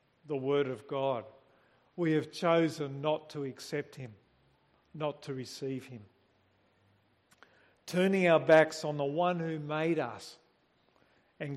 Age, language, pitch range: 50-69, English, 140-180 Hz